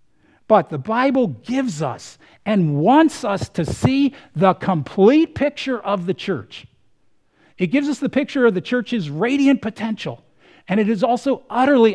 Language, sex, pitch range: English, male, 145-235 Hz